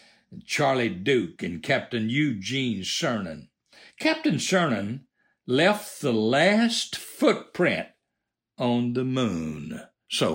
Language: English